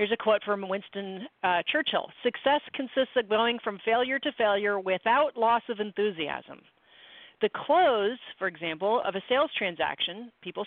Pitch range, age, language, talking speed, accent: 190-245 Hz, 40-59, English, 155 wpm, American